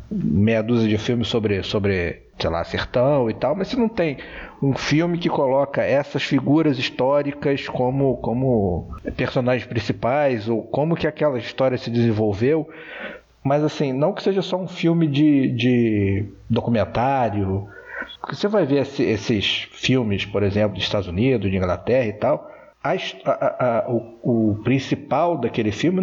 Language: Portuguese